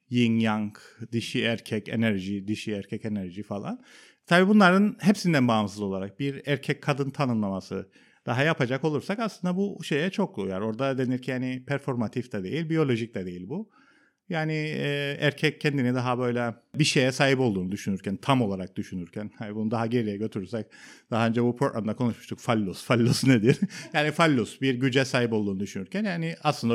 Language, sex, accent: Turkish, male, native